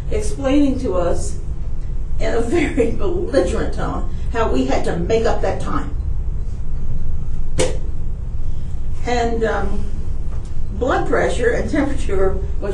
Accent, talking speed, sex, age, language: American, 110 wpm, female, 50-69, English